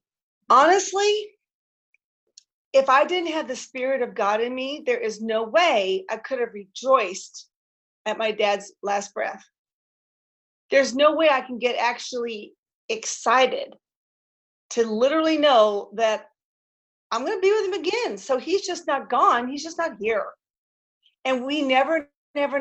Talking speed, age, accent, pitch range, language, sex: 150 wpm, 40-59, American, 220-300 Hz, English, female